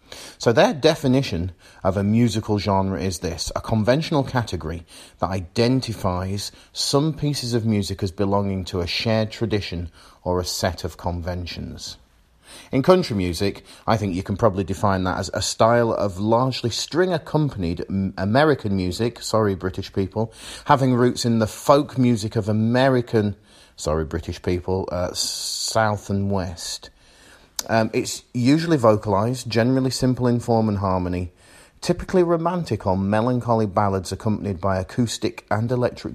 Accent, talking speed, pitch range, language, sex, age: British, 140 wpm, 90-120 Hz, English, male, 40-59